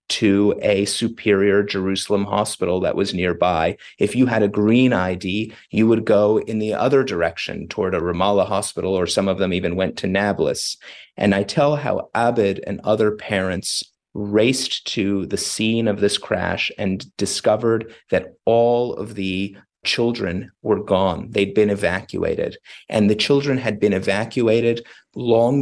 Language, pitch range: English, 100-115 Hz